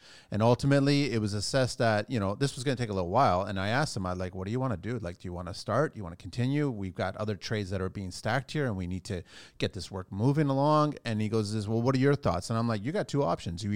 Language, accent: English, American